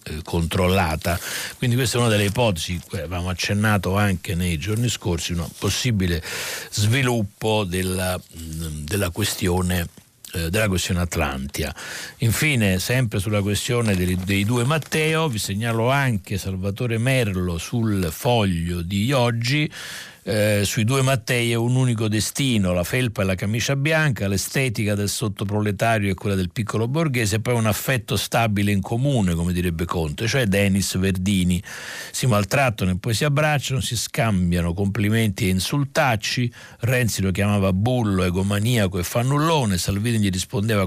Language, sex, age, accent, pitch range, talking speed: Italian, male, 60-79, native, 95-120 Hz, 140 wpm